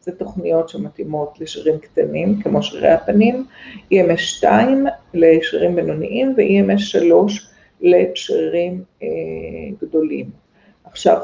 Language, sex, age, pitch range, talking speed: Hebrew, female, 50-69, 155-235 Hz, 95 wpm